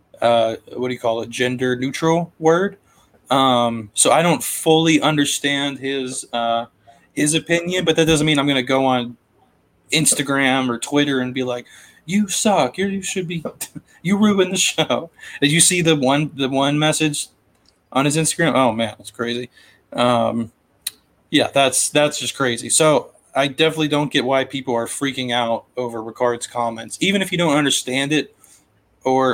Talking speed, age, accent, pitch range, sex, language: 175 wpm, 20-39, American, 120-155 Hz, male, English